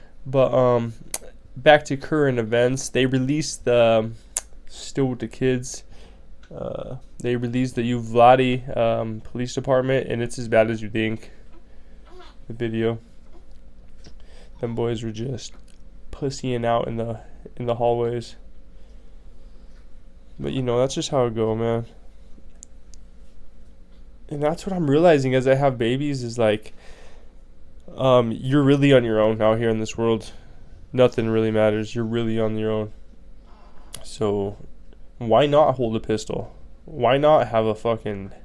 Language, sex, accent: English, male, American